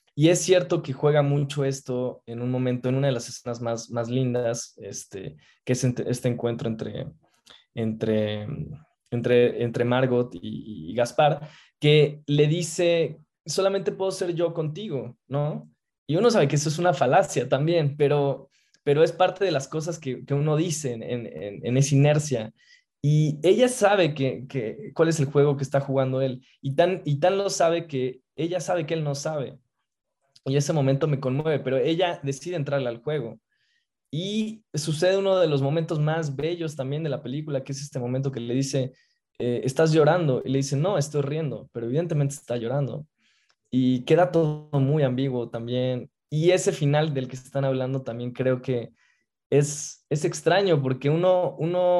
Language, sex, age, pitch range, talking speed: Spanish, male, 20-39, 130-160 Hz, 180 wpm